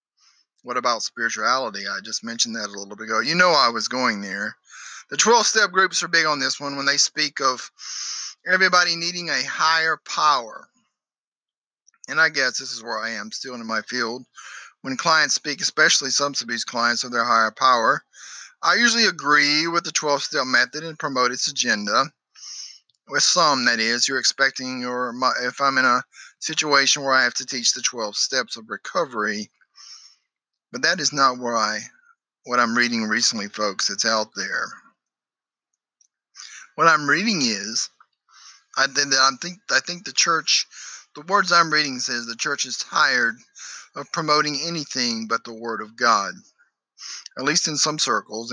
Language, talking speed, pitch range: English, 170 wpm, 120-170 Hz